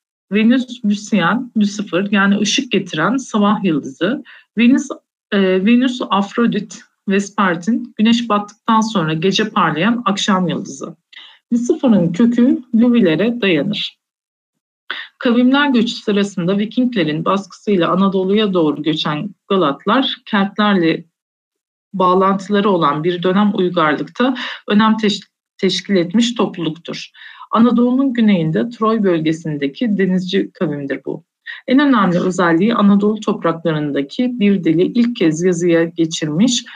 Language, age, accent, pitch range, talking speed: Turkish, 50-69, native, 180-235 Hz, 95 wpm